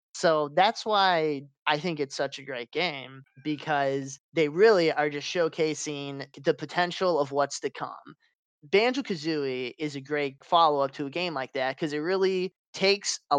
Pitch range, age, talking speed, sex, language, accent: 140-180 Hz, 20-39, 165 wpm, male, English, American